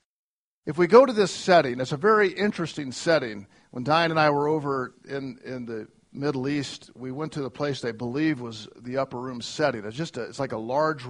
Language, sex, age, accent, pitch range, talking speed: English, male, 50-69, American, 120-150 Hz, 220 wpm